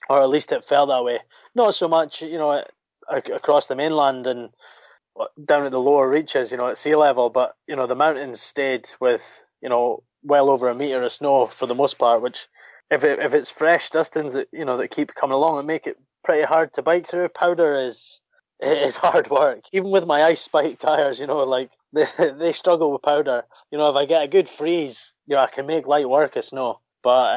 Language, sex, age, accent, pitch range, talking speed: English, male, 20-39, British, 130-160 Hz, 230 wpm